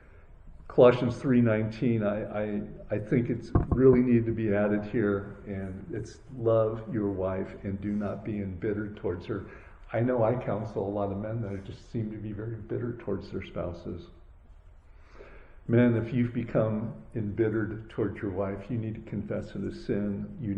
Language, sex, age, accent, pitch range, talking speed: English, male, 50-69, American, 95-115 Hz, 175 wpm